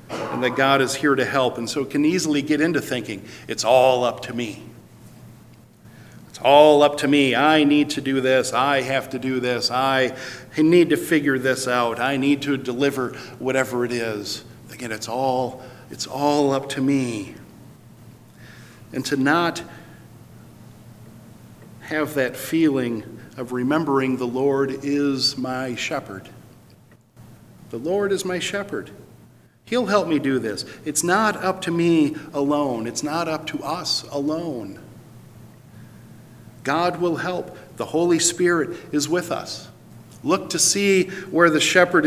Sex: male